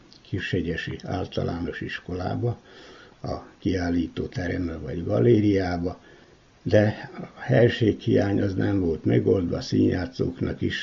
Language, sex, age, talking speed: Hungarian, male, 60-79, 95 wpm